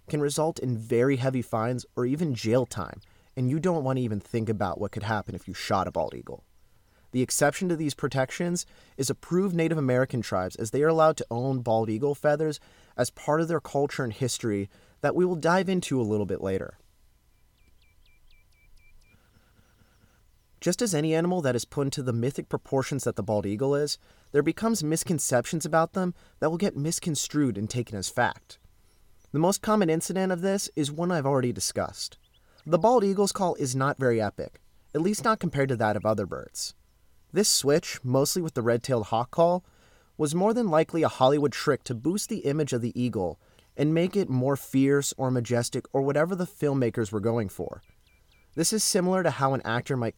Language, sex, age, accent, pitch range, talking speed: English, male, 30-49, American, 115-160 Hz, 195 wpm